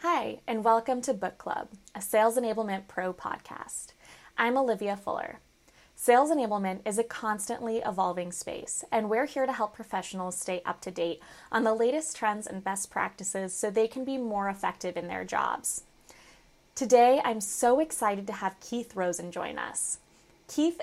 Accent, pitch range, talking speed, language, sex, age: American, 190-245 Hz, 165 wpm, English, female, 20-39